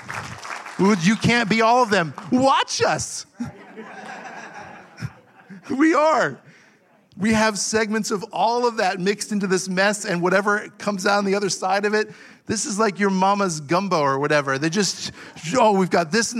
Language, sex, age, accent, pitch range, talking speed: English, male, 40-59, American, 140-185 Hz, 170 wpm